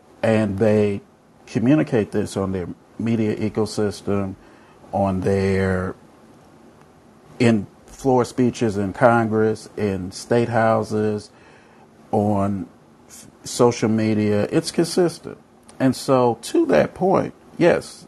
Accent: American